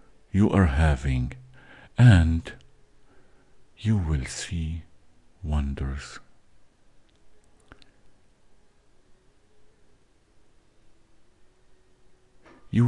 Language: English